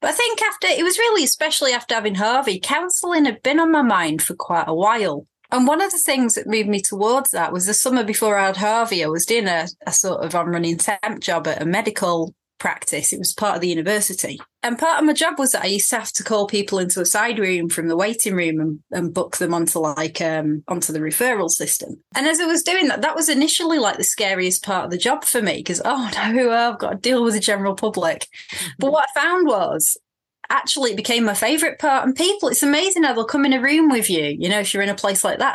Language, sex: English, female